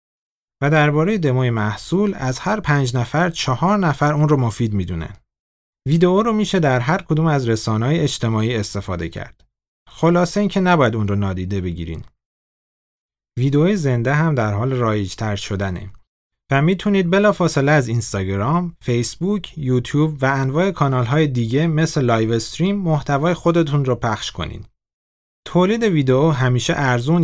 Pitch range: 110-165 Hz